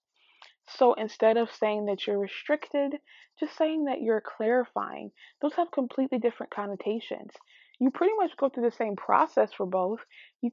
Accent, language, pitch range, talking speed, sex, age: American, English, 200-260 Hz, 160 wpm, female, 20-39